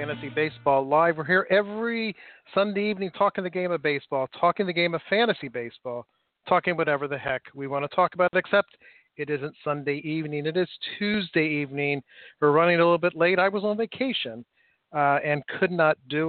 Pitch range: 145-175 Hz